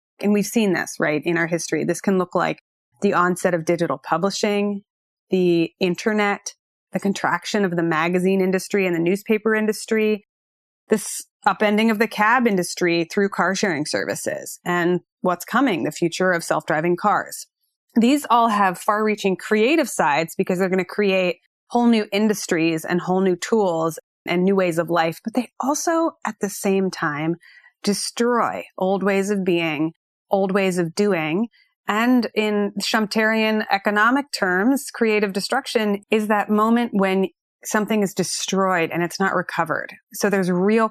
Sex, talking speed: female, 160 wpm